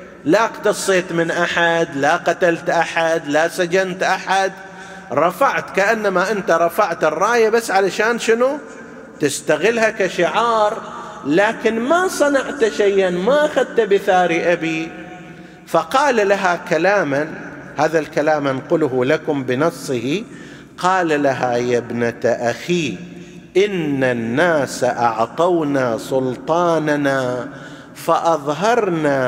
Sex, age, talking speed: male, 50-69, 95 wpm